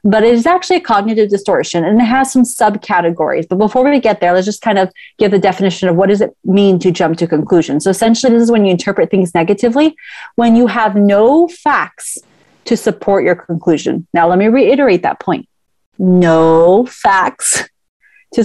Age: 30-49